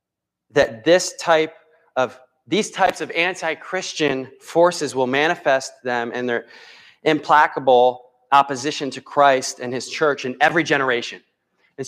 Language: English